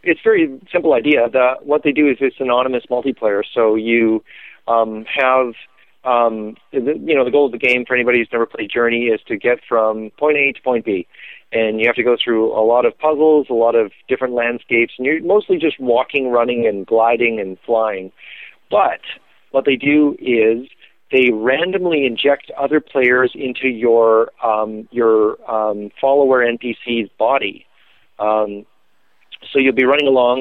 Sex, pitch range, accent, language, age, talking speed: male, 115-140 Hz, American, English, 40-59, 180 wpm